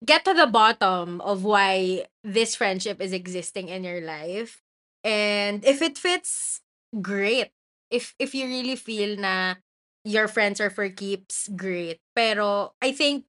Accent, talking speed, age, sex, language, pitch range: Filipino, 150 wpm, 20-39, female, English, 195-245 Hz